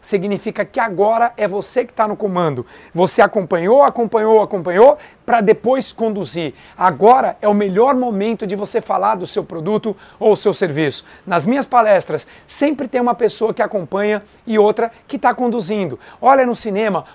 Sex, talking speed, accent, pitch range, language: male, 165 wpm, Brazilian, 205-245 Hz, Portuguese